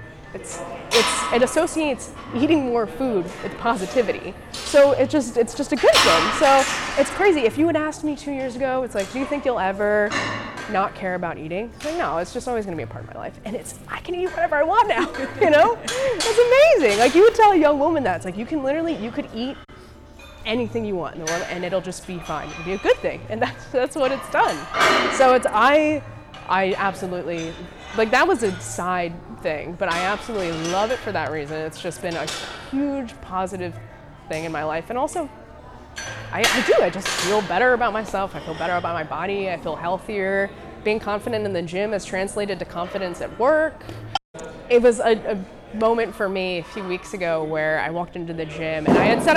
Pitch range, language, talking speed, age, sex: 175-270 Hz, English, 220 wpm, 20-39, female